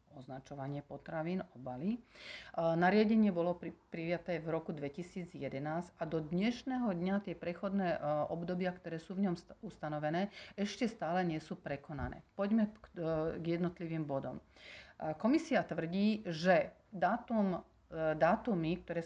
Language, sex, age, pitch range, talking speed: Slovak, female, 40-59, 165-200 Hz, 115 wpm